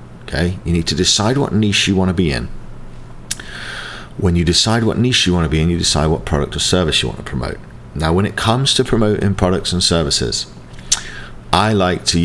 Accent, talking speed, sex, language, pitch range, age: British, 210 wpm, male, English, 80-100 Hz, 40-59